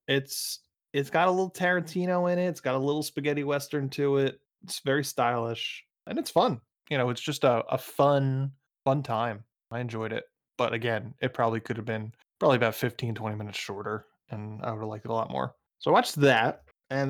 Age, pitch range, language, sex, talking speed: 20-39, 115-145 Hz, English, male, 215 wpm